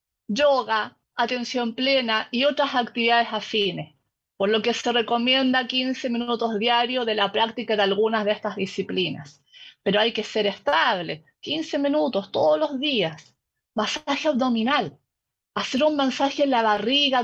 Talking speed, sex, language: 145 wpm, female, Spanish